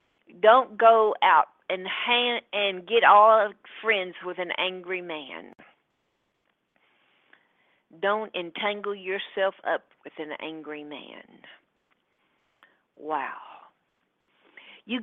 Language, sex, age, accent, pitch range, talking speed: English, female, 50-69, American, 185-235 Hz, 90 wpm